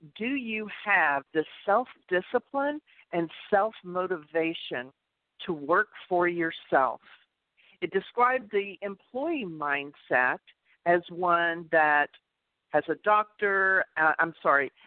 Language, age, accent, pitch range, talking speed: English, 50-69, American, 155-220 Hz, 110 wpm